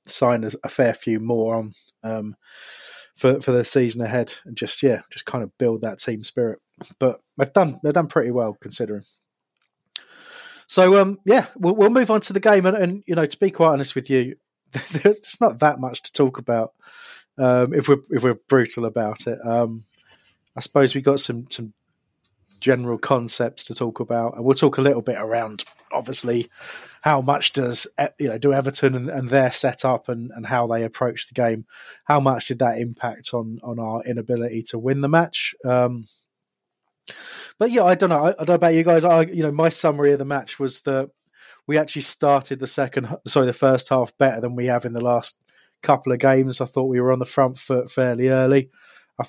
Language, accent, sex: English, British, male